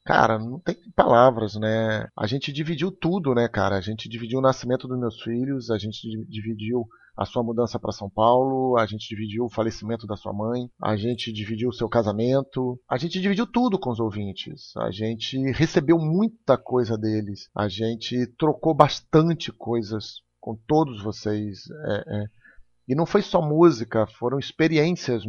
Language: Portuguese